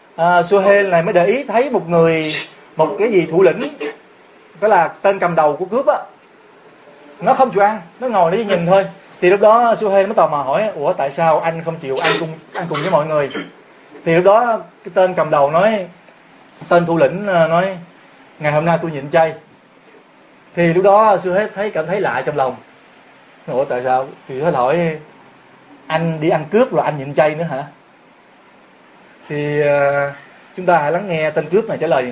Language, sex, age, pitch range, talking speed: Vietnamese, male, 20-39, 150-195 Hz, 205 wpm